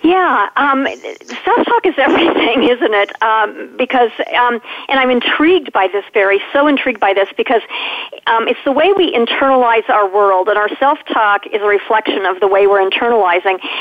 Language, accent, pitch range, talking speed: English, American, 215-280 Hz, 175 wpm